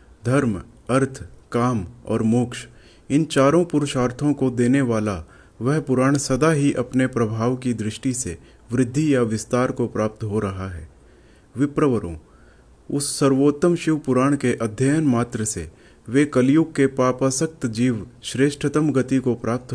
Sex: male